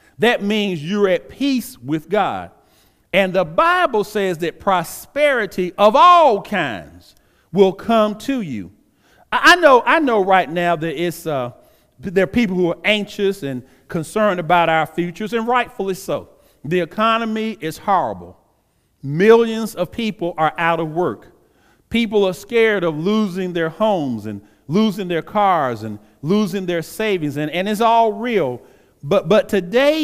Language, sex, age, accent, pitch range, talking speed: English, male, 40-59, American, 170-230 Hz, 155 wpm